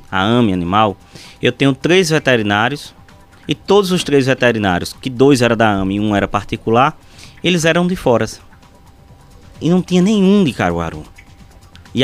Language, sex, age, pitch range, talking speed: Portuguese, male, 20-39, 100-140 Hz, 160 wpm